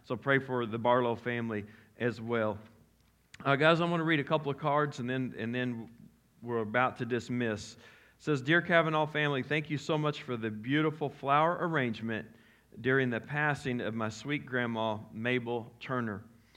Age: 40-59